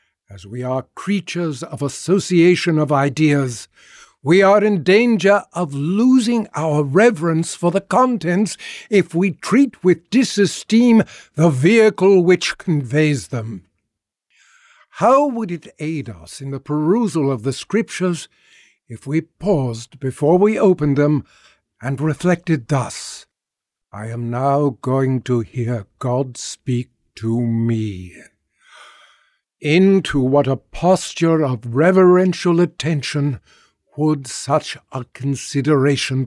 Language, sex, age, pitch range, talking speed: English, male, 60-79, 135-185 Hz, 115 wpm